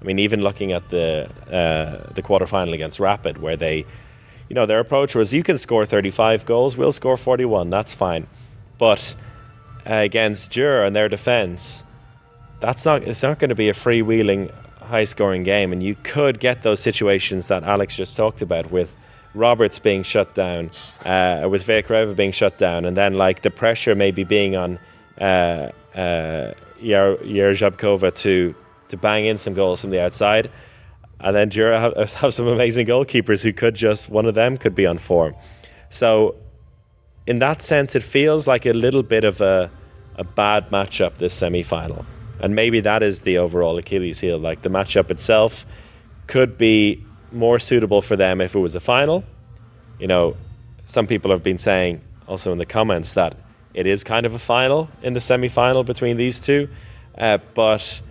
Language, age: English, 20-39